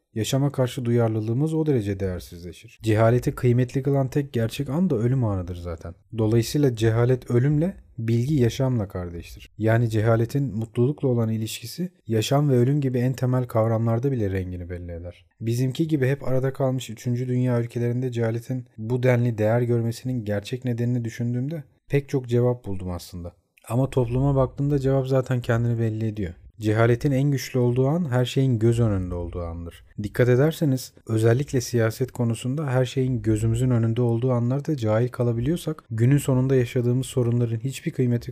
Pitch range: 110-130 Hz